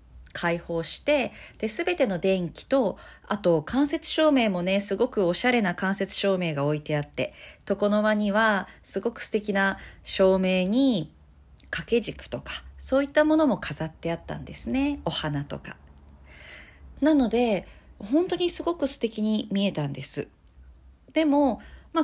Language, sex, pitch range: Japanese, female, 145-240 Hz